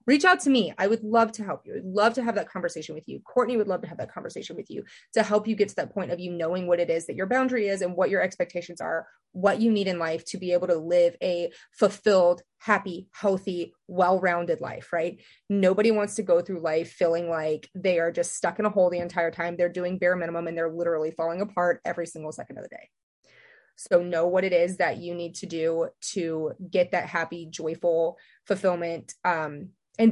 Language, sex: English, female